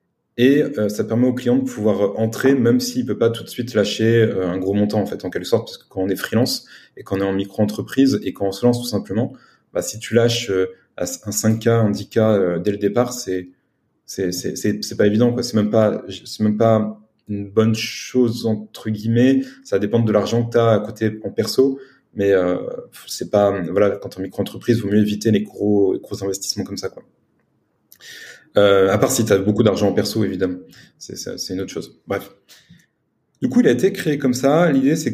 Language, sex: French, male